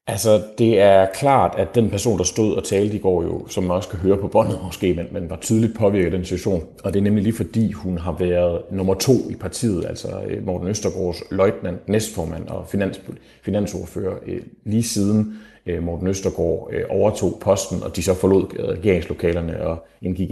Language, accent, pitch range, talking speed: Danish, native, 90-110 Hz, 200 wpm